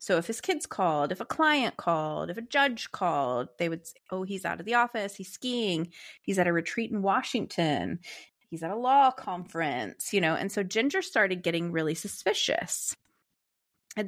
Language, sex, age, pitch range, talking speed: English, female, 30-49, 170-230 Hz, 190 wpm